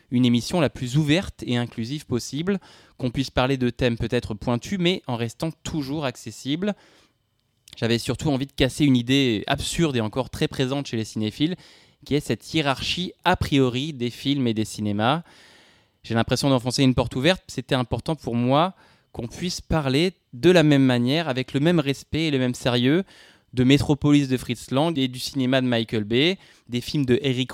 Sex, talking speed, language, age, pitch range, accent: male, 185 wpm, French, 20-39, 115-145 Hz, French